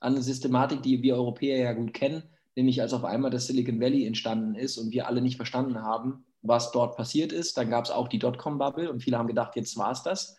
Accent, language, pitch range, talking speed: German, German, 120-140 Hz, 235 wpm